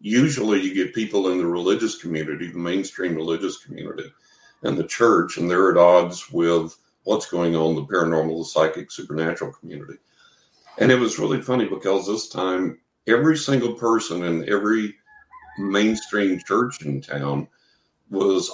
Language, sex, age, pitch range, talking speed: English, male, 50-69, 85-100 Hz, 150 wpm